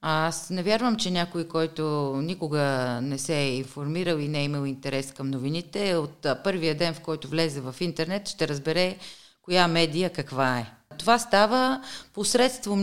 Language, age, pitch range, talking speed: Bulgarian, 30-49, 165-225 Hz, 165 wpm